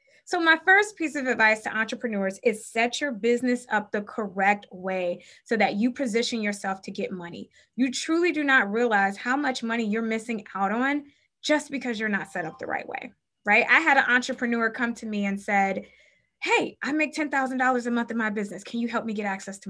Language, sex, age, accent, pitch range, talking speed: English, female, 20-39, American, 210-290 Hz, 215 wpm